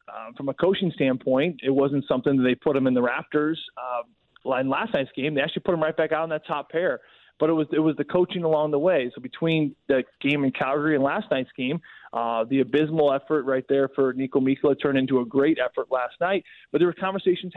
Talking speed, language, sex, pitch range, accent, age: 245 wpm, English, male, 135-165 Hz, American, 20-39